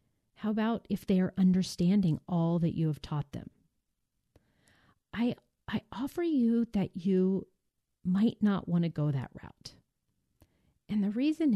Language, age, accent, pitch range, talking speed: English, 40-59, American, 165-220 Hz, 145 wpm